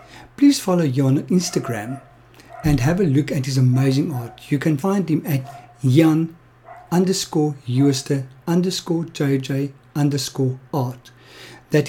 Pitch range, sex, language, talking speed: 130-165 Hz, male, English, 130 wpm